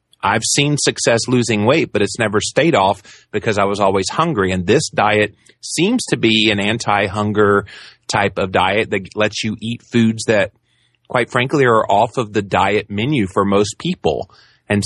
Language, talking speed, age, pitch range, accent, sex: English, 180 wpm, 30-49, 100-120 Hz, American, male